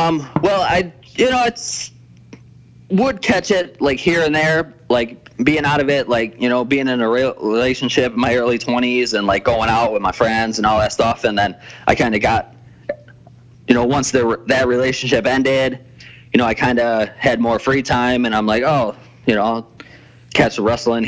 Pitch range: 110-125 Hz